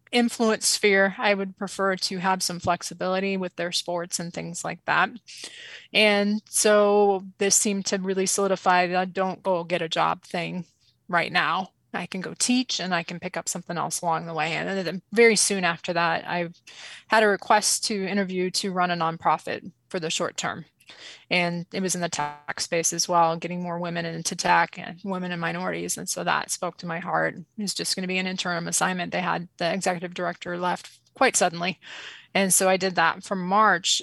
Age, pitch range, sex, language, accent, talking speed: 20-39, 175-195 Hz, female, English, American, 205 wpm